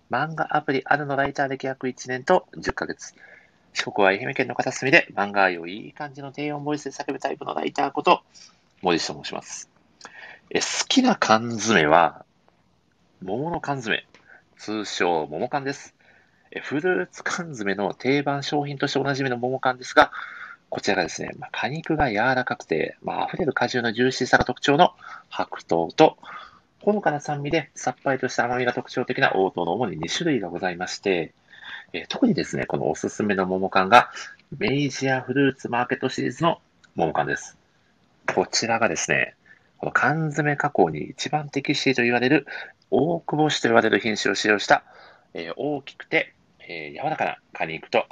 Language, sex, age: Japanese, male, 40-59